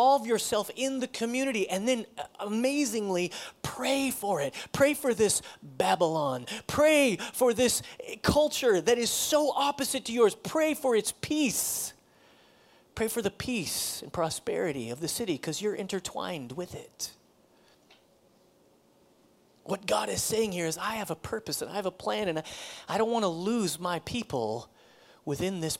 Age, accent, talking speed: 30-49, American, 160 wpm